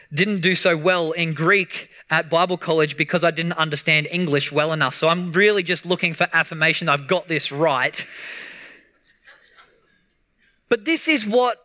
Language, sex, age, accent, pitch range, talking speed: English, male, 20-39, Australian, 170-230 Hz, 160 wpm